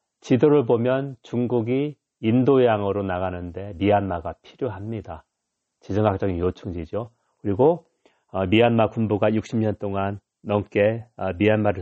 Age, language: 40-59, Korean